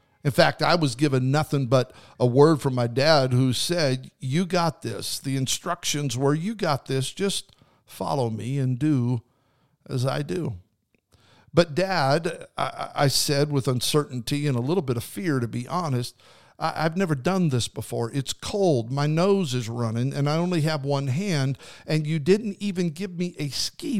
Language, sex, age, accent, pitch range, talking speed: English, male, 50-69, American, 125-155 Hz, 180 wpm